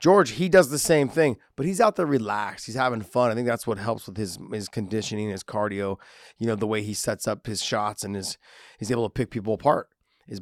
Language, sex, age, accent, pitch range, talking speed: English, male, 30-49, American, 110-145 Hz, 250 wpm